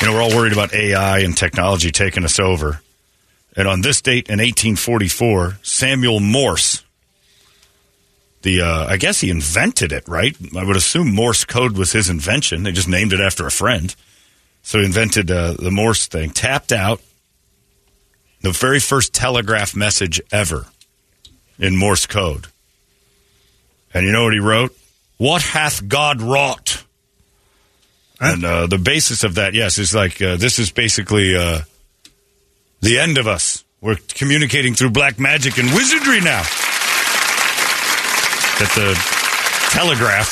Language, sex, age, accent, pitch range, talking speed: English, male, 40-59, American, 95-120 Hz, 145 wpm